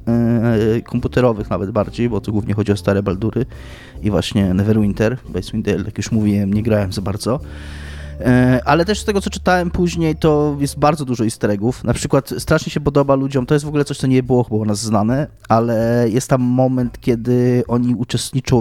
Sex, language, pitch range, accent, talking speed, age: male, Polish, 110-135 Hz, native, 195 wpm, 20-39